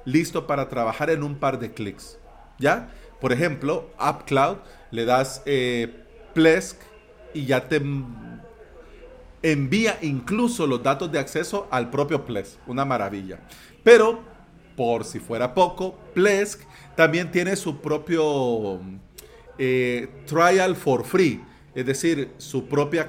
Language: Spanish